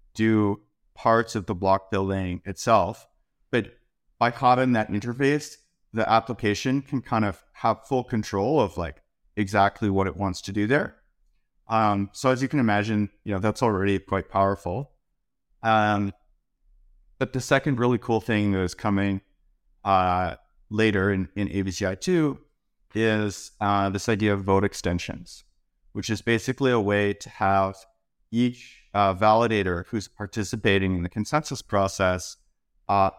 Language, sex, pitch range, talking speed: English, male, 95-115 Hz, 145 wpm